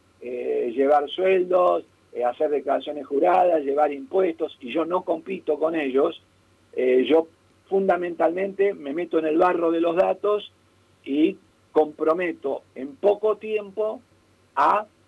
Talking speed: 125 wpm